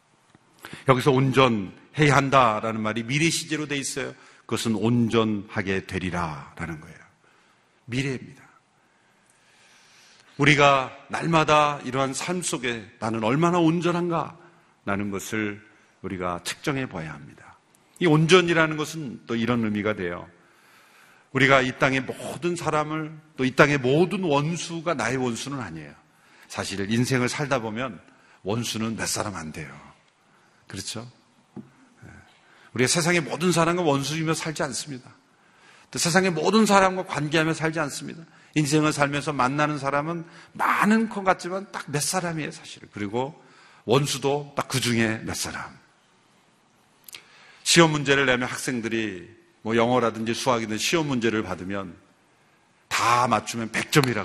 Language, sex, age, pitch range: Korean, male, 40-59, 110-155 Hz